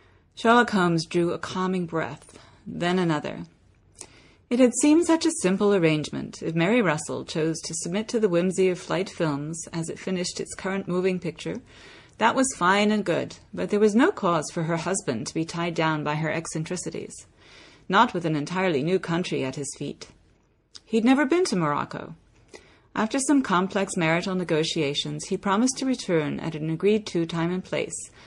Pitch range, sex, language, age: 150-210 Hz, female, English, 40-59